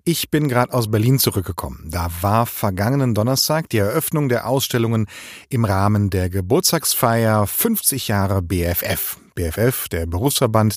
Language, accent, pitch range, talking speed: German, German, 100-130 Hz, 135 wpm